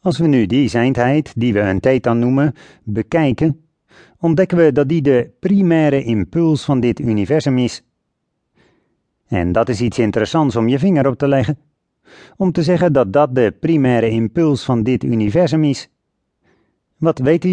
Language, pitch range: English, 115-155 Hz